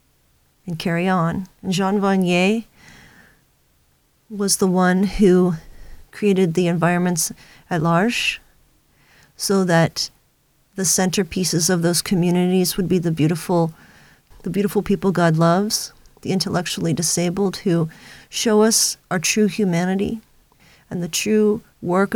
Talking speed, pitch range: 115 wpm, 170-200 Hz